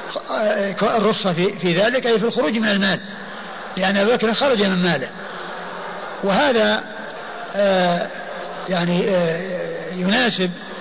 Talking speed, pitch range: 105 wpm, 185-215 Hz